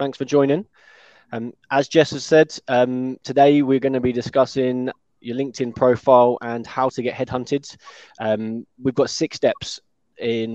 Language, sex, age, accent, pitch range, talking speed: English, male, 20-39, British, 115-135 Hz, 160 wpm